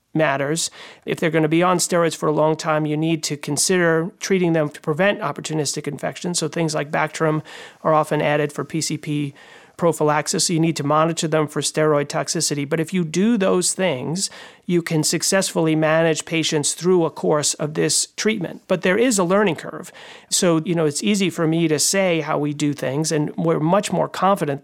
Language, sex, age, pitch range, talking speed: English, male, 40-59, 150-175 Hz, 200 wpm